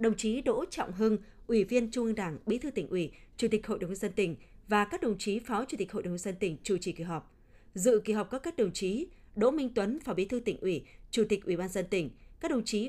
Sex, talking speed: female, 285 wpm